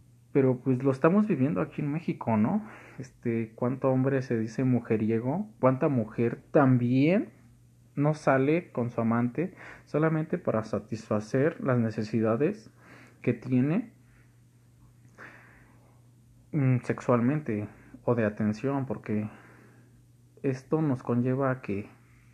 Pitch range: 120-140 Hz